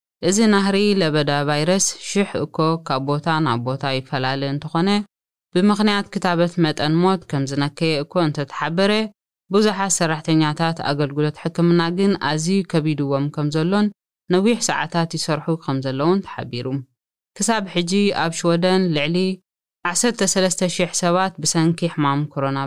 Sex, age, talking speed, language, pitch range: female, 20-39, 120 wpm, Amharic, 150-190 Hz